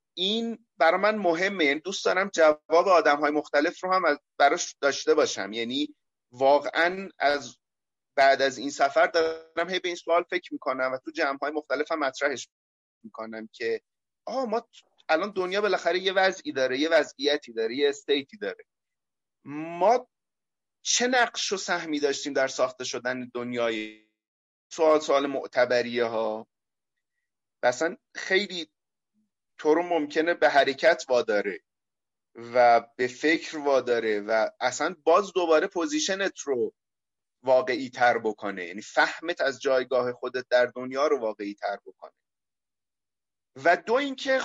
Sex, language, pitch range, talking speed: male, Persian, 130-195 Hz, 130 wpm